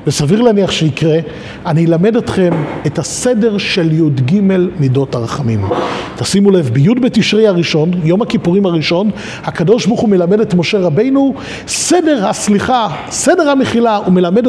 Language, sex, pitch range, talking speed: Hebrew, male, 170-240 Hz, 135 wpm